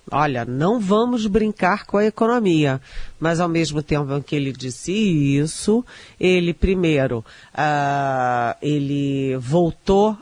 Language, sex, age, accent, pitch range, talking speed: Portuguese, female, 40-59, Brazilian, 145-180 Hz, 115 wpm